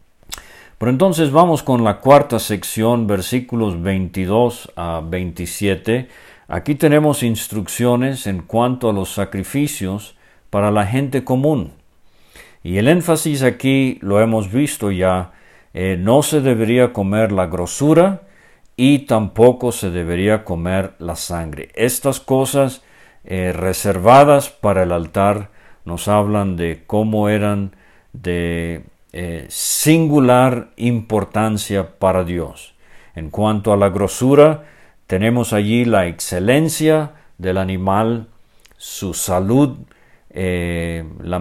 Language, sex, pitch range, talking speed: English, male, 90-125 Hz, 115 wpm